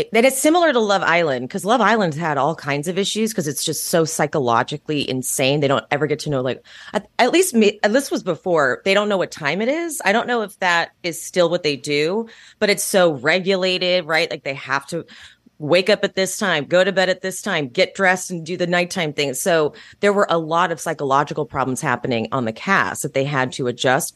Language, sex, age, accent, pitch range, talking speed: English, female, 30-49, American, 145-205 Hz, 235 wpm